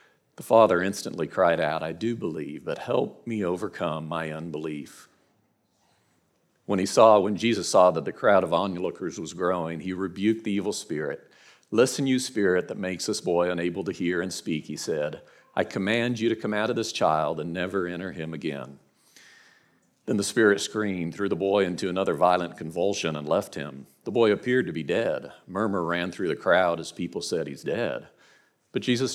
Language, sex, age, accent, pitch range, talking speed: English, male, 50-69, American, 85-115 Hz, 190 wpm